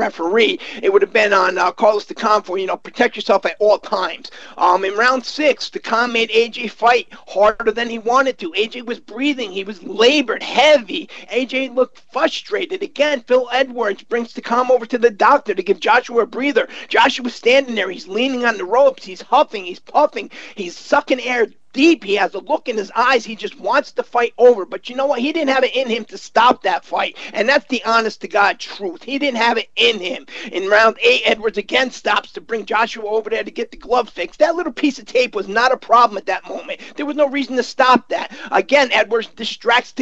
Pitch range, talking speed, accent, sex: 225-280 Hz, 220 wpm, American, male